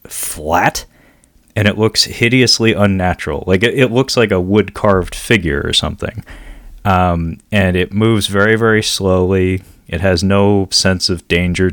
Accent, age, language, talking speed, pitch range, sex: American, 30-49, English, 150 wpm, 85-105 Hz, male